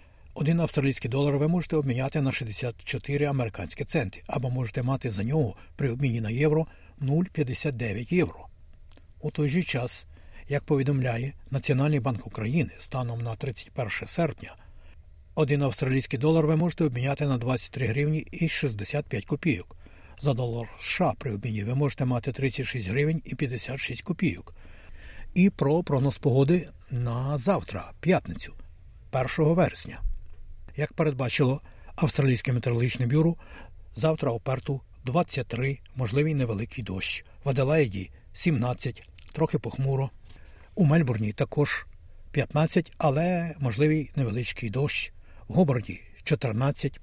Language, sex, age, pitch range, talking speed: Ukrainian, male, 60-79, 110-150 Hz, 120 wpm